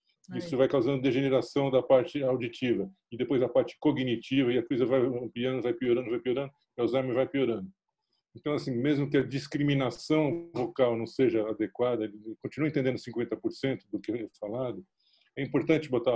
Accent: Brazilian